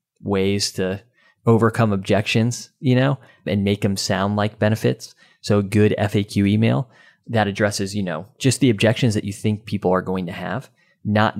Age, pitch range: 30-49, 95-115 Hz